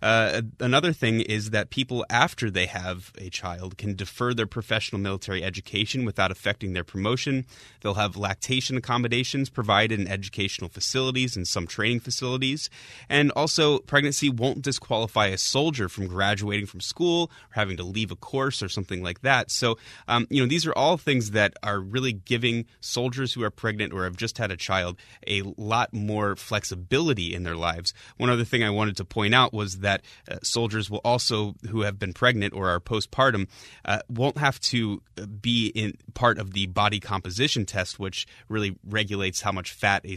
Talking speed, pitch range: 185 wpm, 100-120 Hz